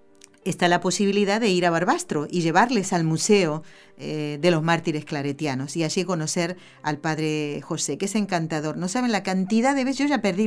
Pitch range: 155-190 Hz